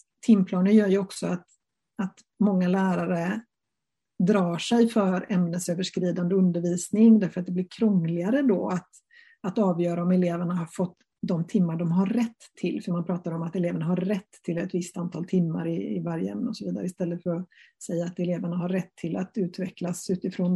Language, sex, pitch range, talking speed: Swedish, female, 175-215 Hz, 185 wpm